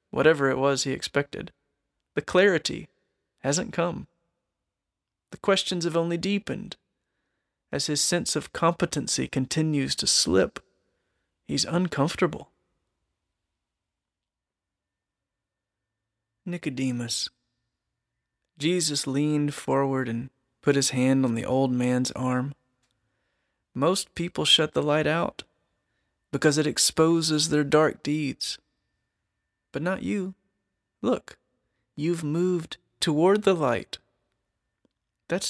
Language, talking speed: English, 100 wpm